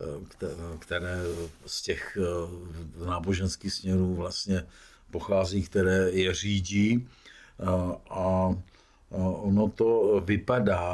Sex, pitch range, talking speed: male, 90-105 Hz, 75 wpm